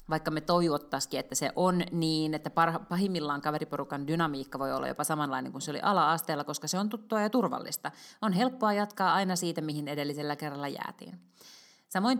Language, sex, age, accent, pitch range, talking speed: Finnish, female, 30-49, native, 145-185 Hz, 175 wpm